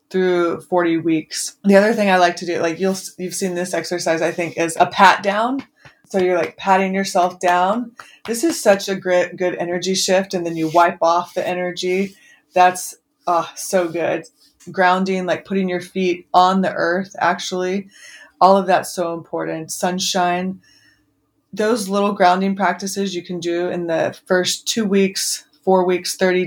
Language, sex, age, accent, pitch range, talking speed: English, female, 20-39, American, 175-195 Hz, 170 wpm